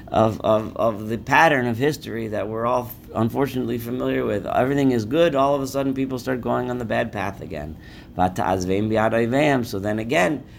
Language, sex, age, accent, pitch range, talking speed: English, male, 50-69, American, 100-130 Hz, 180 wpm